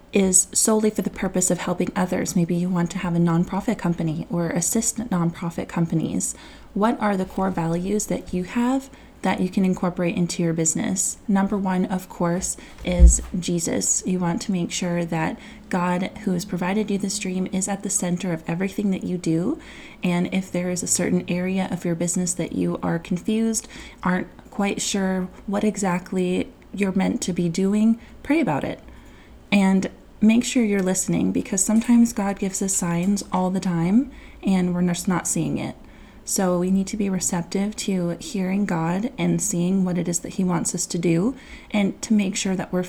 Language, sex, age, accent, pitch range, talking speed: English, female, 20-39, American, 175-210 Hz, 190 wpm